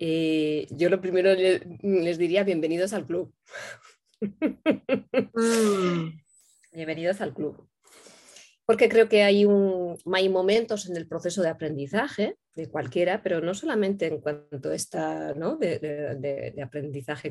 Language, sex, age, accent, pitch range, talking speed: Spanish, female, 20-39, Spanish, 165-215 Hz, 120 wpm